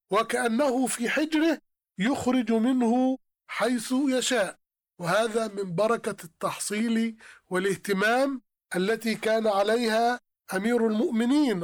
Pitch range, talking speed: 215-250 Hz, 90 wpm